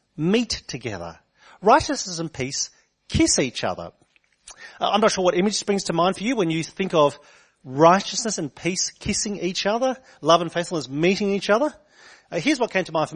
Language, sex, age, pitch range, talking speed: English, male, 40-59, 155-220 Hz, 190 wpm